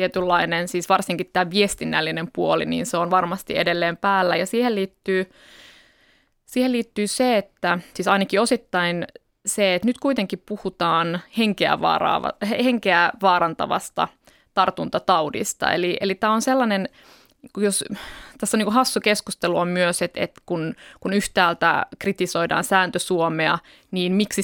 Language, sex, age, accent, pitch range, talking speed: Finnish, female, 20-39, native, 175-205 Hz, 130 wpm